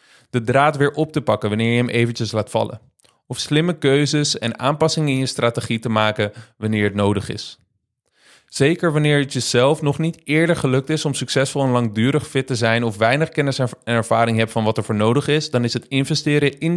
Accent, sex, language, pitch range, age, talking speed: Dutch, male, Dutch, 115-150 Hz, 30-49, 210 wpm